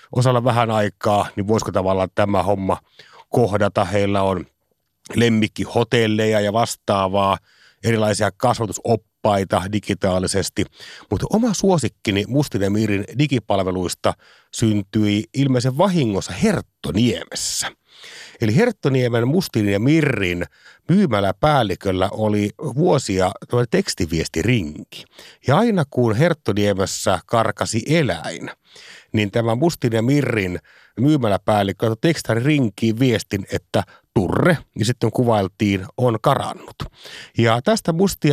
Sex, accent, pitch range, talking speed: male, native, 100-130 Hz, 95 wpm